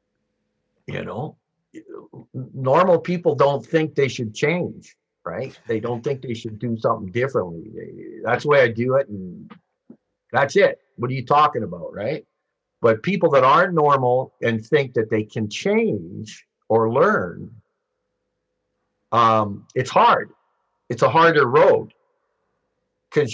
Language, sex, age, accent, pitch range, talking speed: English, male, 50-69, American, 110-155 Hz, 140 wpm